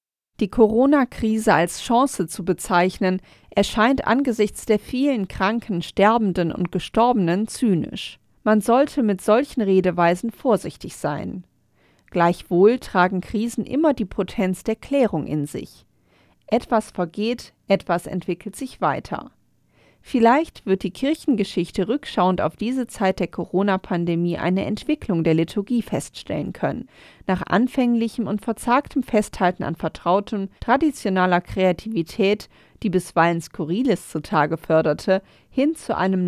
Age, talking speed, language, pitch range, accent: 40-59, 115 wpm, German, 175-230 Hz, German